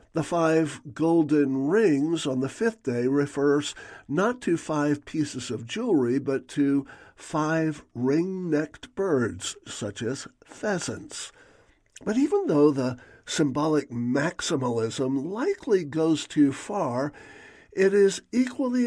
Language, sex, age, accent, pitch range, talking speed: English, male, 60-79, American, 135-185 Hz, 115 wpm